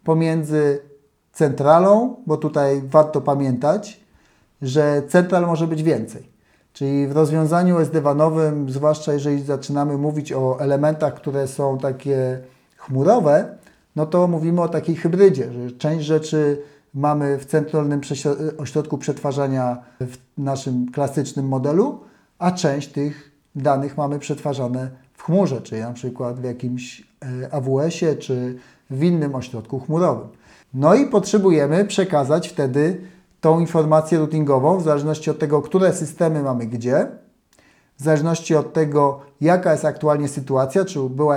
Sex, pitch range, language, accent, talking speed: male, 140-160 Hz, Polish, native, 125 wpm